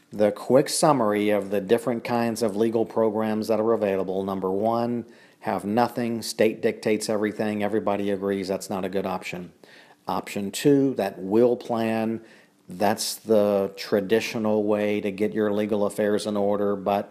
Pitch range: 100-110 Hz